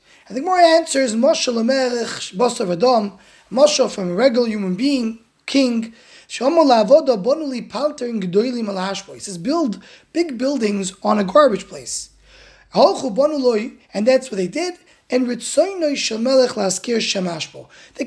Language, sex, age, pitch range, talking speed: English, male, 20-39, 210-285 Hz, 95 wpm